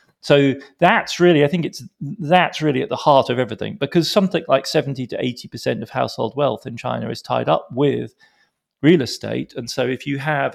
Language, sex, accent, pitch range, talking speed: English, male, British, 115-155 Hz, 205 wpm